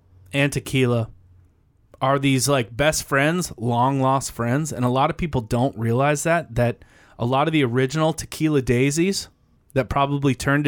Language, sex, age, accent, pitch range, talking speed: English, male, 20-39, American, 120-155 Hz, 165 wpm